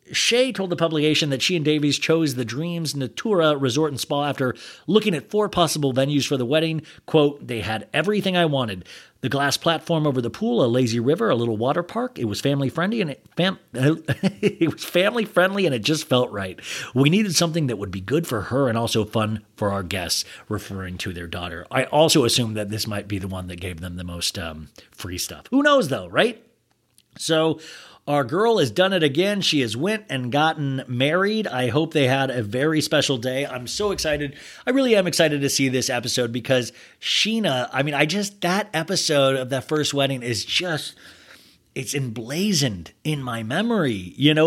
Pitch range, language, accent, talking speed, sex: 125-170 Hz, English, American, 205 wpm, male